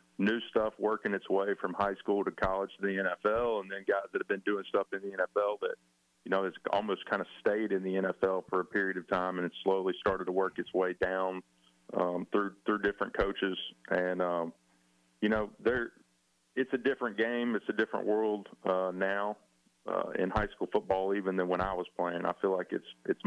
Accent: American